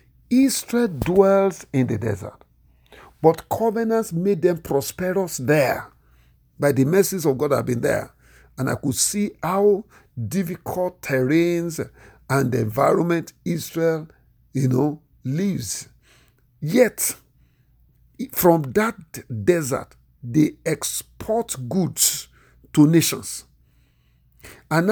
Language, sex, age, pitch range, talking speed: English, male, 50-69, 120-190 Hz, 105 wpm